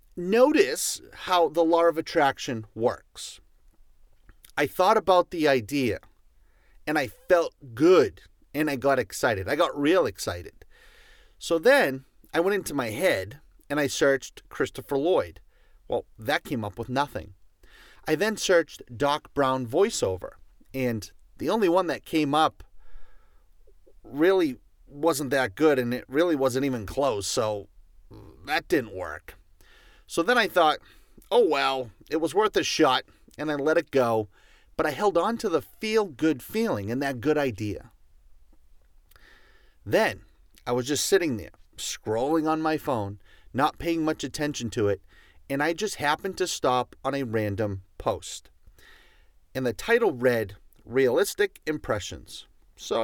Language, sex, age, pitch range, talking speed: English, male, 40-59, 115-170 Hz, 145 wpm